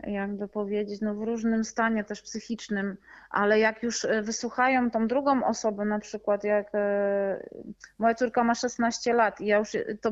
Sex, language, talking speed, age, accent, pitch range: female, Polish, 160 wpm, 20-39, native, 210-250 Hz